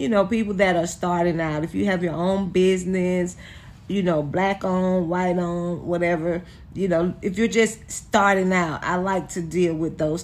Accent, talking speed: American, 195 wpm